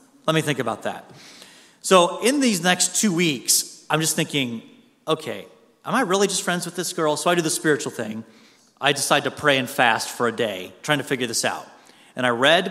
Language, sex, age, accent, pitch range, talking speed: English, male, 30-49, American, 135-175 Hz, 215 wpm